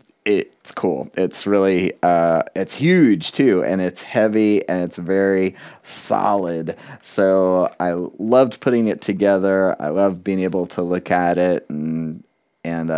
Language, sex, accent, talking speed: English, male, American, 145 wpm